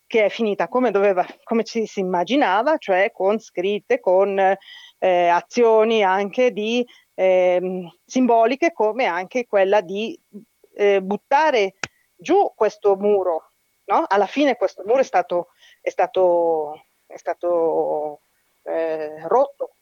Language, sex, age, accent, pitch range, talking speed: Italian, female, 30-49, native, 185-225 Hz, 125 wpm